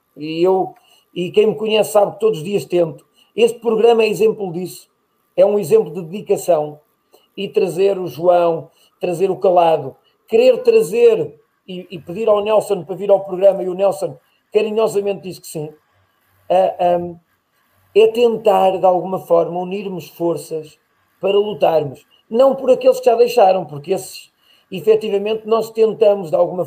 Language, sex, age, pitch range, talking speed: Portuguese, male, 40-59, 170-210 Hz, 160 wpm